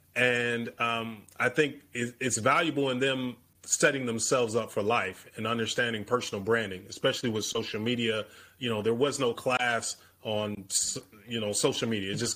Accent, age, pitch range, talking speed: American, 30-49, 110-125 Hz, 165 wpm